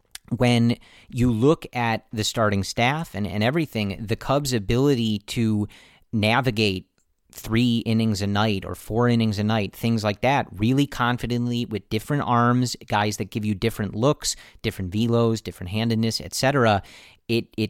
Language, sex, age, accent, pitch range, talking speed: English, male, 40-59, American, 105-125 Hz, 155 wpm